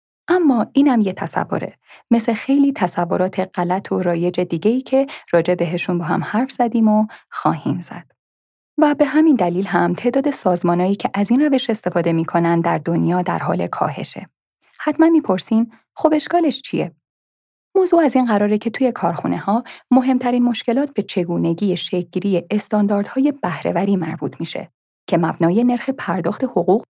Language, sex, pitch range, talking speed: Persian, female, 180-250 Hz, 145 wpm